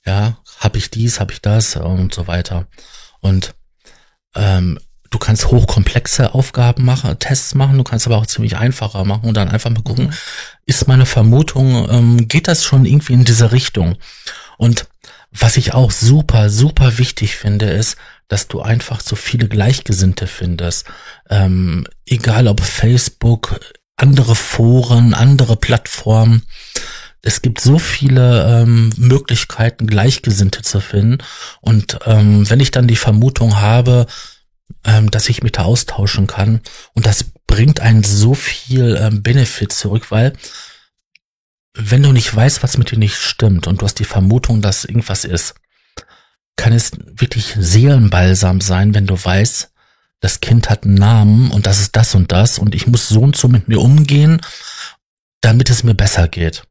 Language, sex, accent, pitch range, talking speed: German, male, German, 105-125 Hz, 160 wpm